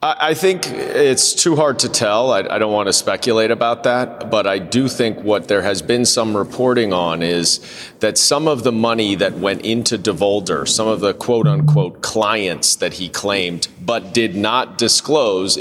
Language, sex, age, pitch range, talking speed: English, male, 40-59, 105-130 Hz, 185 wpm